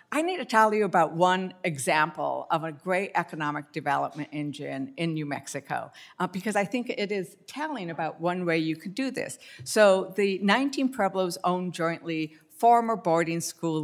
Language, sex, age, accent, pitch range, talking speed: English, female, 60-79, American, 165-220 Hz, 175 wpm